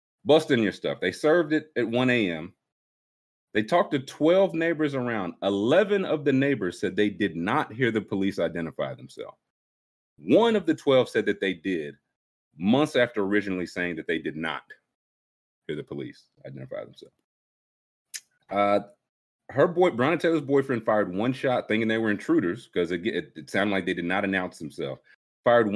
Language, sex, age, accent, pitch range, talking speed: English, male, 30-49, American, 95-155 Hz, 170 wpm